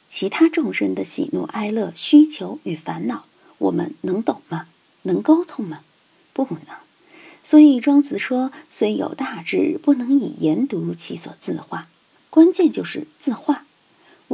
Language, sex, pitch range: Chinese, female, 205-310 Hz